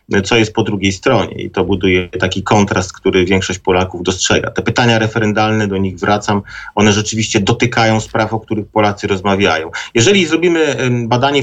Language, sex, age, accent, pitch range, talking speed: Polish, male, 40-59, native, 100-115 Hz, 165 wpm